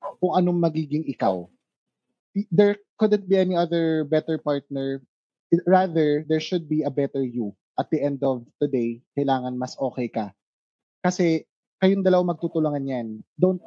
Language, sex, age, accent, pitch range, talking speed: Filipino, male, 20-39, native, 135-180 Hz, 145 wpm